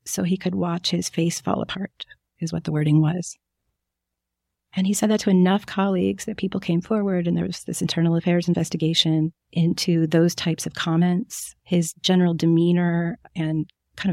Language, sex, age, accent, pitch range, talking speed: English, female, 40-59, American, 160-185 Hz, 175 wpm